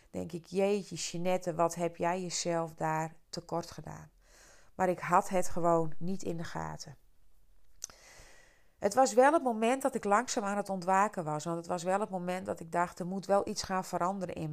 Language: Dutch